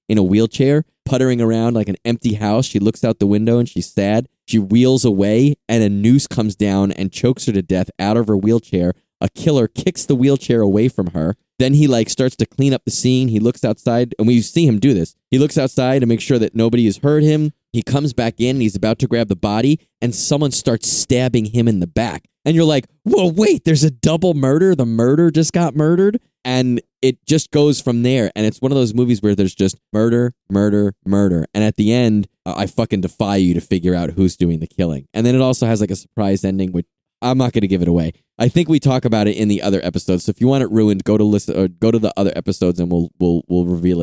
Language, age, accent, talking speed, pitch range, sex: English, 20-39, American, 250 wpm, 100-130 Hz, male